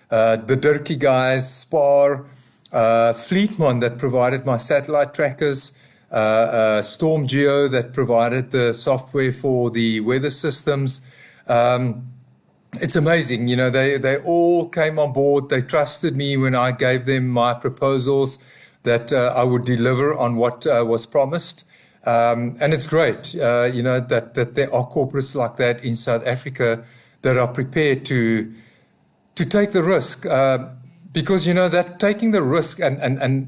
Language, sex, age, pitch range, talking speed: English, male, 50-69, 125-165 Hz, 160 wpm